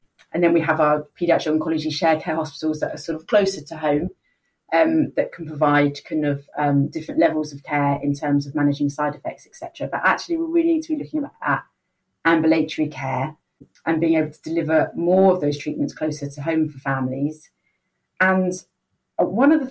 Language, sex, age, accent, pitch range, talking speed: English, female, 30-49, British, 150-180 Hz, 195 wpm